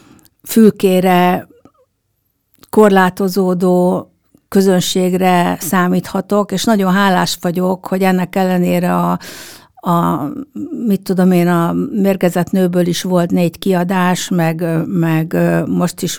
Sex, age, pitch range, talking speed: female, 60-79, 170-190 Hz, 100 wpm